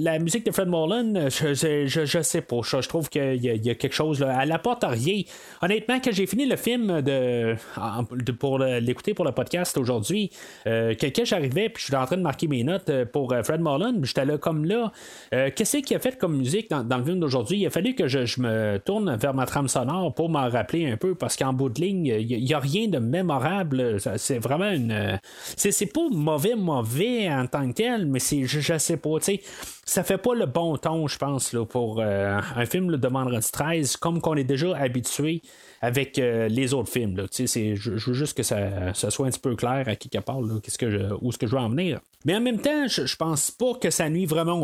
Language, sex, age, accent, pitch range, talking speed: French, male, 30-49, Canadian, 125-180 Hz, 250 wpm